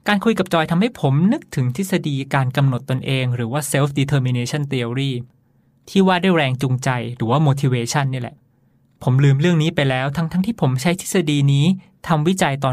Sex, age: male, 20-39